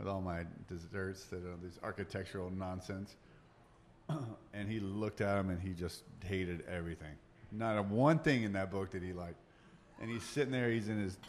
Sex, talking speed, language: male, 190 wpm, English